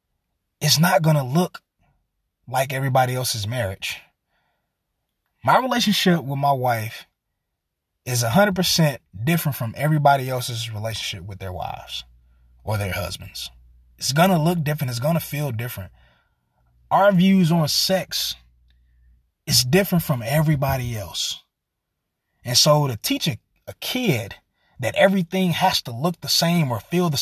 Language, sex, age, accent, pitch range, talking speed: English, male, 20-39, American, 100-155 Hz, 140 wpm